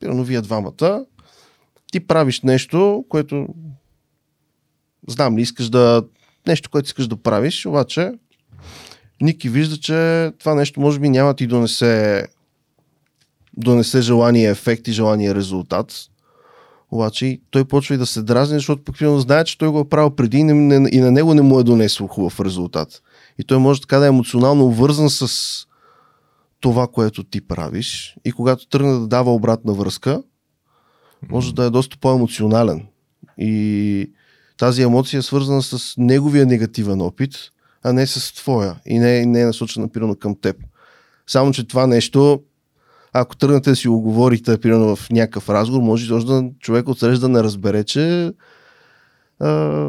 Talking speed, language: 160 wpm, Bulgarian